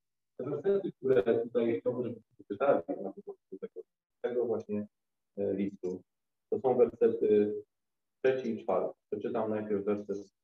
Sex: male